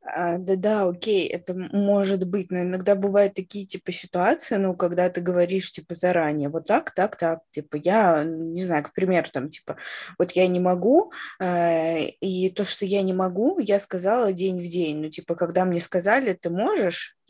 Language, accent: Russian, native